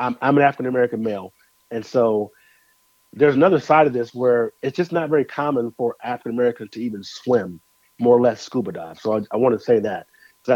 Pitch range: 120-155 Hz